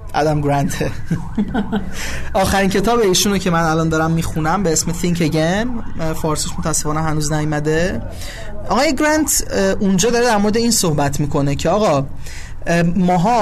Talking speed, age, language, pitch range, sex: 135 wpm, 30-49, Persian, 150-205 Hz, male